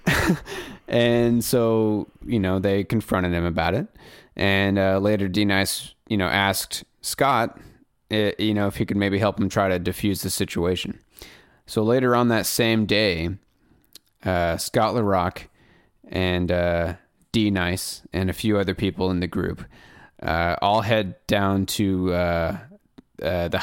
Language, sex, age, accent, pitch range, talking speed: English, male, 30-49, American, 90-110 Hz, 155 wpm